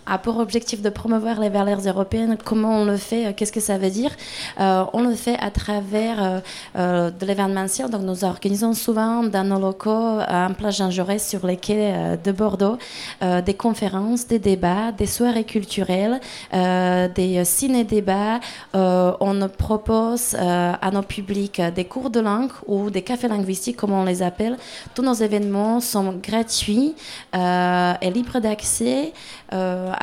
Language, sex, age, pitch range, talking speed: French, female, 20-39, 190-230 Hz, 170 wpm